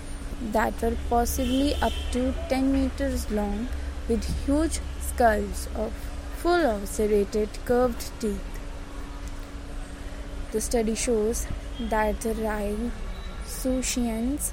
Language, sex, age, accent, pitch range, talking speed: English, female, 20-39, Indian, 215-255 Hz, 95 wpm